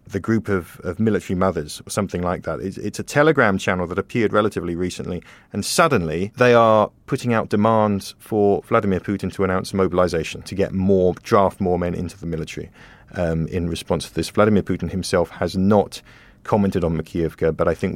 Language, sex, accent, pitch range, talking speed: English, male, British, 85-105 Hz, 190 wpm